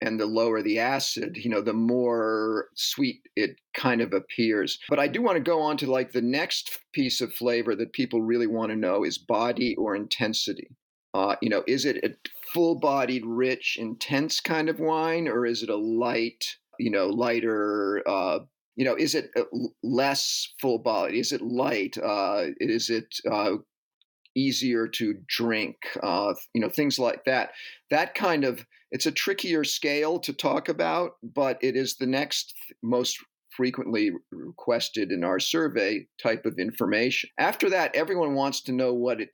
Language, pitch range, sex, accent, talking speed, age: English, 115-150 Hz, male, American, 170 wpm, 40-59